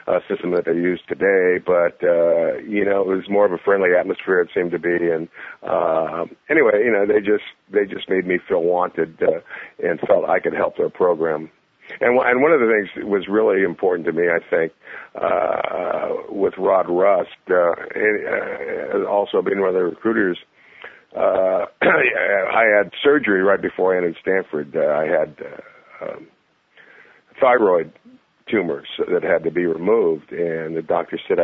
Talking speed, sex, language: 180 wpm, male, English